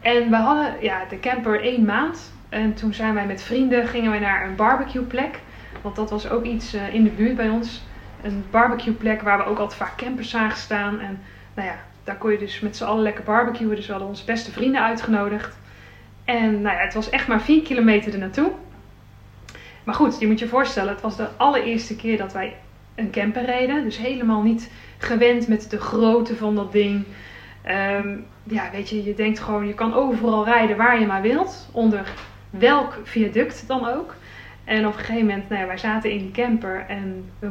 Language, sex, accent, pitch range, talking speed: Dutch, female, Dutch, 200-235 Hz, 210 wpm